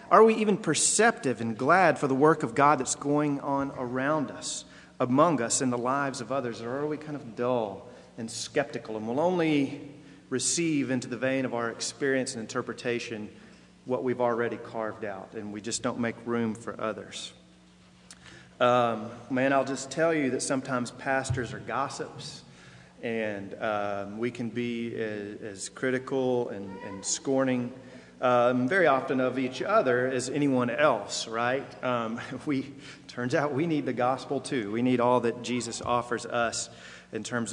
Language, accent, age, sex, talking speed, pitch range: English, American, 40-59, male, 170 wpm, 115-145 Hz